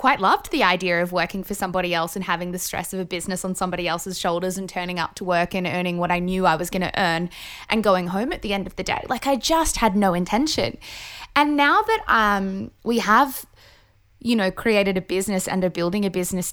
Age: 10-29